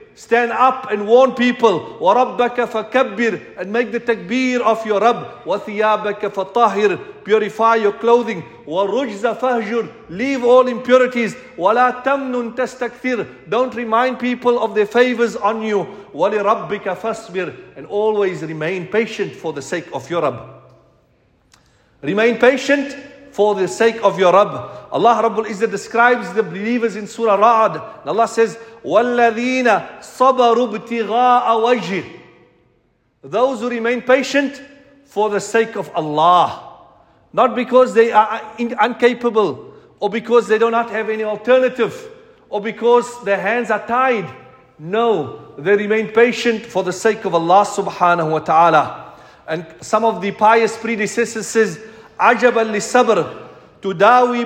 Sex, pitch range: male, 205-245 Hz